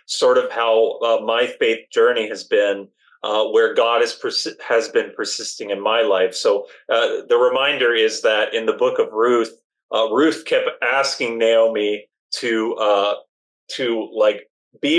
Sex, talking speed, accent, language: male, 155 wpm, American, English